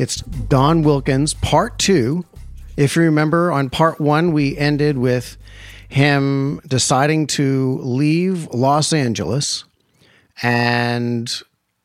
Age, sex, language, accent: 40-59, male, English, American